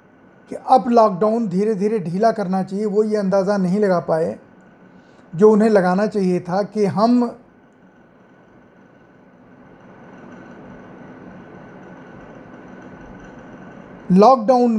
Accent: native